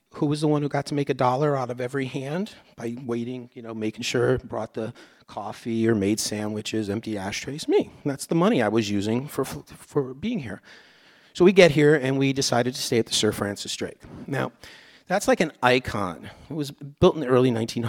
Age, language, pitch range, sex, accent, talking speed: 40-59, English, 115-150 Hz, male, American, 215 wpm